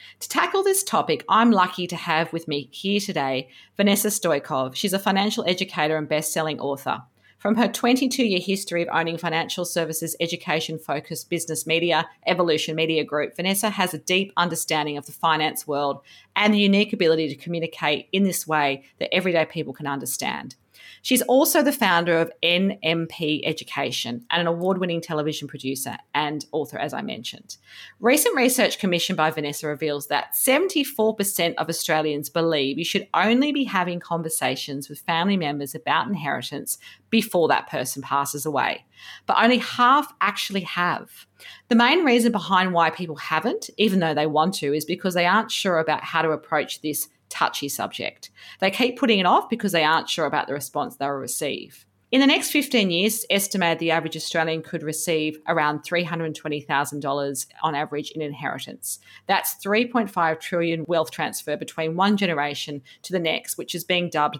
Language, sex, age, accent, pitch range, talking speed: English, female, 40-59, Australian, 150-195 Hz, 165 wpm